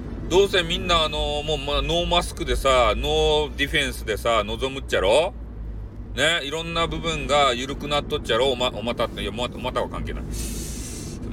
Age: 40-59